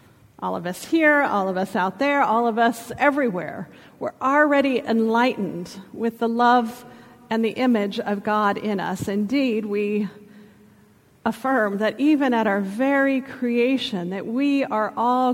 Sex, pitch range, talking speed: female, 200-240 Hz, 155 wpm